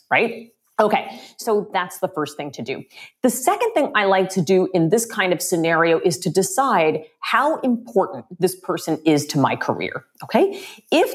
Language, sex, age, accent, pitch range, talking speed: English, female, 40-59, American, 160-225 Hz, 185 wpm